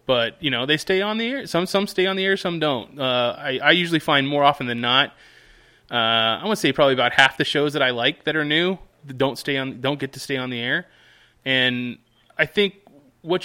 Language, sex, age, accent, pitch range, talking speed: English, male, 20-39, American, 120-155 Hz, 245 wpm